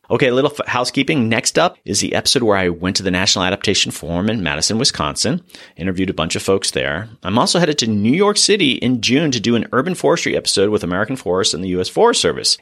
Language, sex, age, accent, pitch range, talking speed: English, male, 30-49, American, 95-120 Hz, 240 wpm